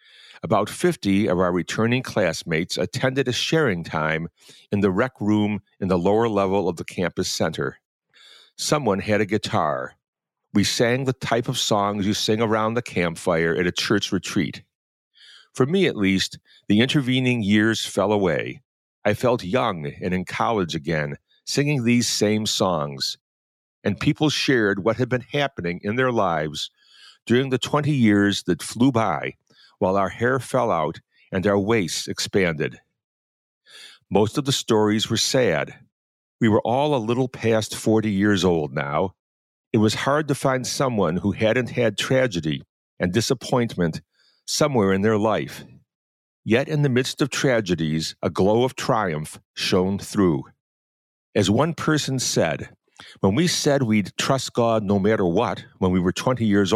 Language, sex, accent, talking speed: English, male, American, 160 wpm